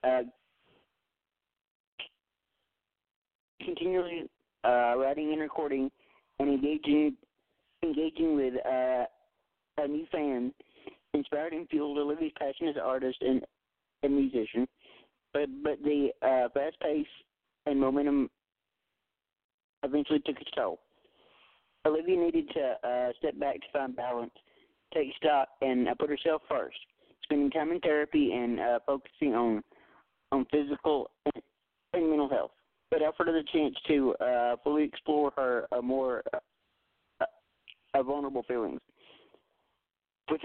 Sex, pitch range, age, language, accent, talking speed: male, 130-155 Hz, 40-59, English, American, 125 wpm